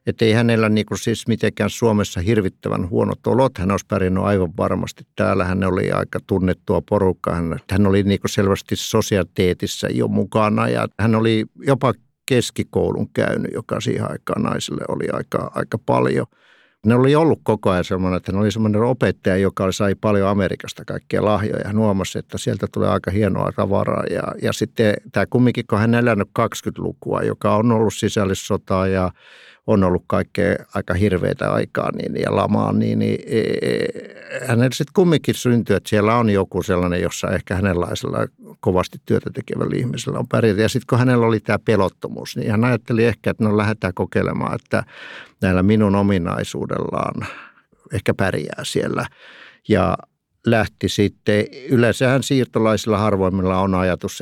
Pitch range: 95-110 Hz